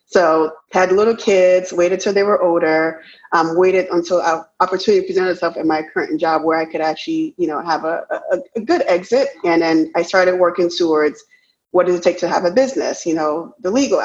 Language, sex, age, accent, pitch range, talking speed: English, female, 20-39, American, 170-220 Hz, 215 wpm